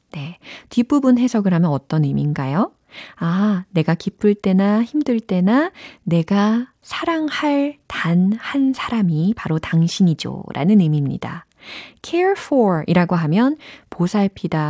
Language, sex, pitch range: Korean, female, 160-220 Hz